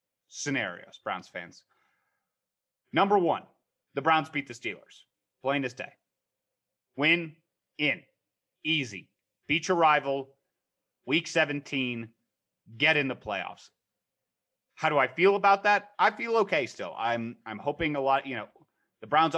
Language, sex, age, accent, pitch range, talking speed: English, male, 30-49, American, 125-165 Hz, 135 wpm